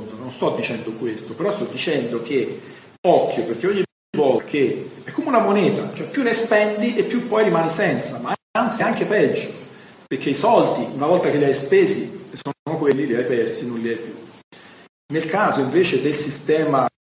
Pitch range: 130-210 Hz